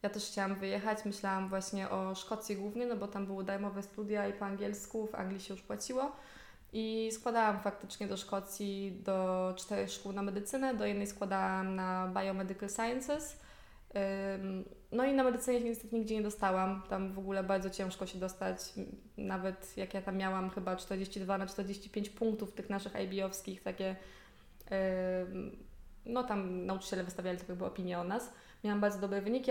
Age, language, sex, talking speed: 20-39, Polish, female, 165 wpm